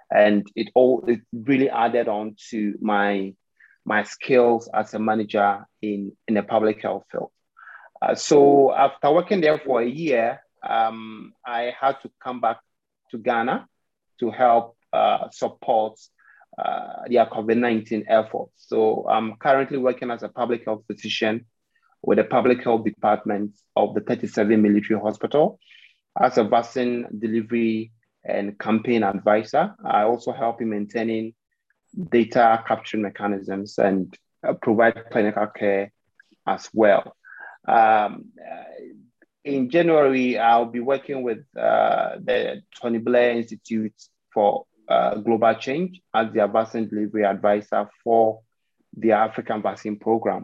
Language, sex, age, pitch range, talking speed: English, male, 30-49, 105-125 Hz, 130 wpm